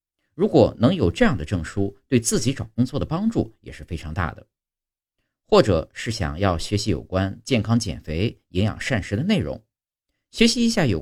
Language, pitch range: Chinese, 85-125 Hz